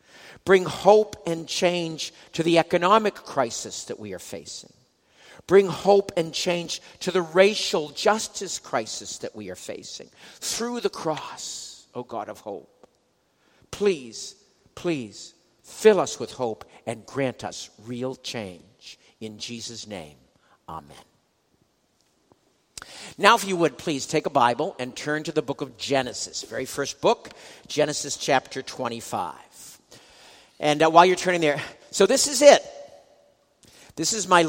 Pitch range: 130-185 Hz